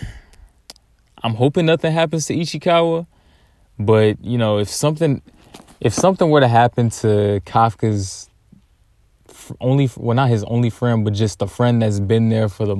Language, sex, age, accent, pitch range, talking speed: English, male, 20-39, American, 100-120 Hz, 155 wpm